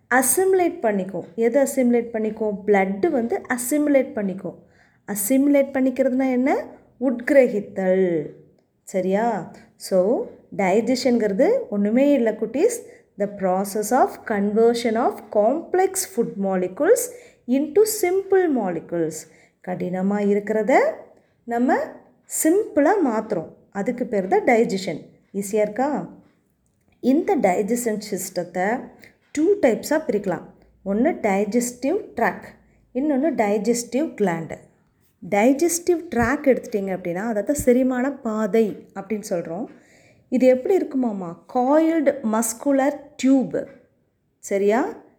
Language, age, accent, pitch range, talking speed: Tamil, 20-39, native, 205-275 Hz, 90 wpm